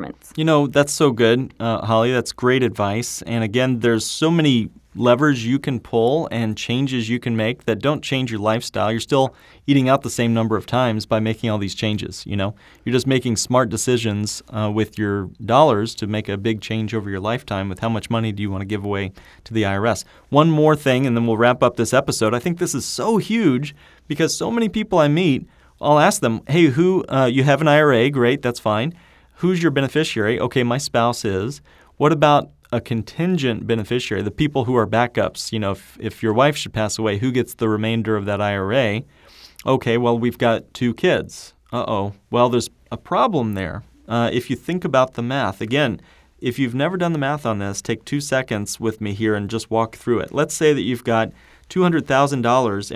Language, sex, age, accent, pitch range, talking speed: English, male, 30-49, American, 110-135 Hz, 215 wpm